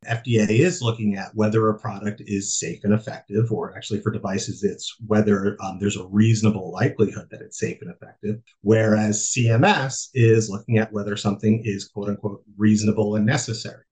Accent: American